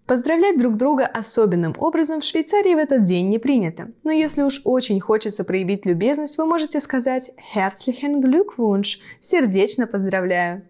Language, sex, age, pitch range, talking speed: Russian, female, 20-39, 195-280 Hz, 145 wpm